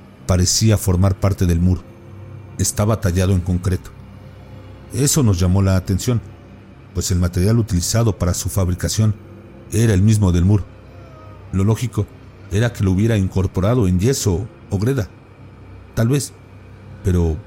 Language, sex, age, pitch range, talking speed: Spanish, male, 50-69, 95-110 Hz, 135 wpm